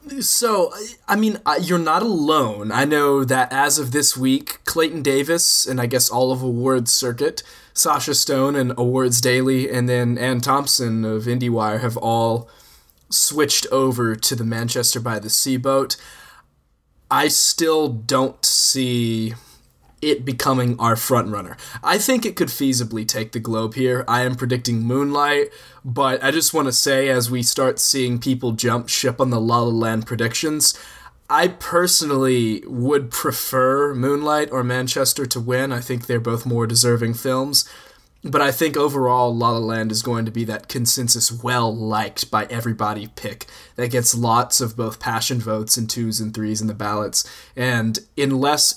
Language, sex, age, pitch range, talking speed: English, male, 20-39, 115-135 Hz, 165 wpm